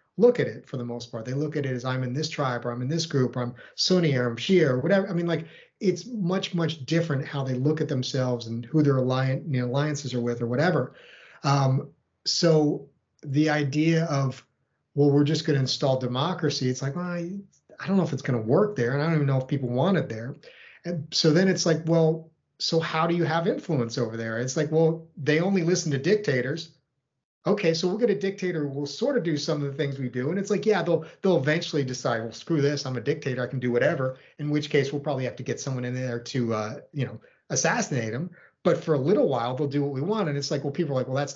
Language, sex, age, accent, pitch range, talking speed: English, male, 40-59, American, 130-170 Hz, 255 wpm